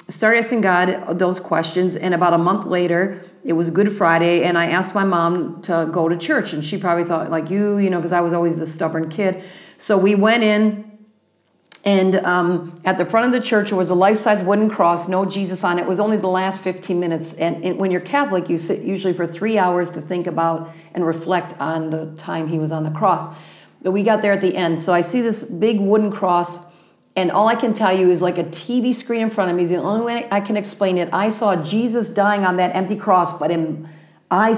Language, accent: English, American